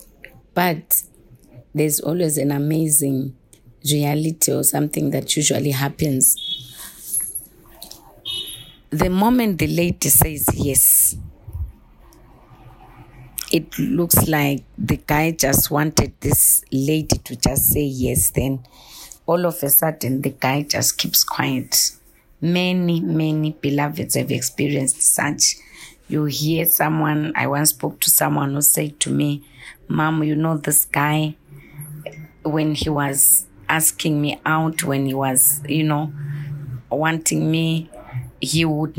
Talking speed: 120 wpm